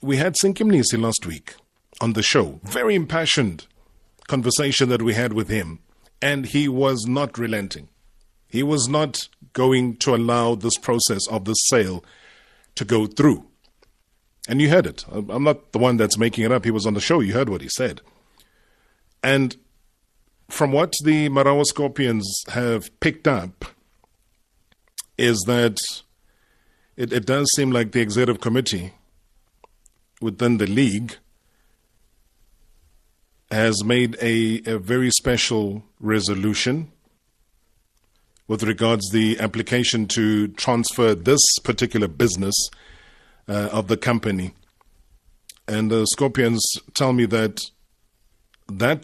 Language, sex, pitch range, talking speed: English, male, 105-125 Hz, 130 wpm